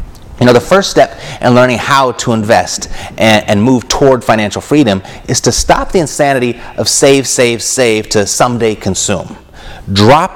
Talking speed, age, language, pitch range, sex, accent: 170 wpm, 30-49, English, 105-135 Hz, male, American